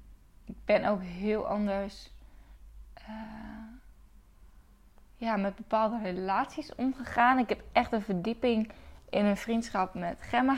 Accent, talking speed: Dutch, 115 wpm